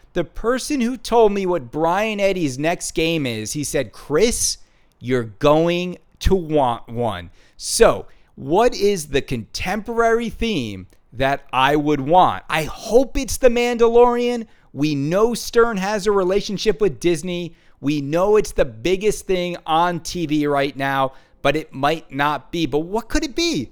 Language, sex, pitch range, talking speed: English, male, 145-225 Hz, 155 wpm